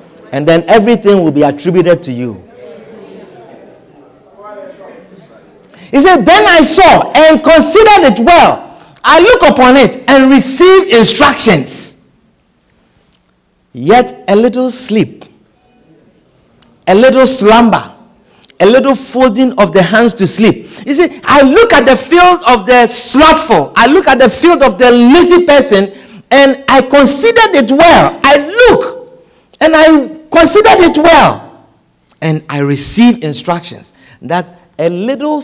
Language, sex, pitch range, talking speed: English, male, 190-290 Hz, 130 wpm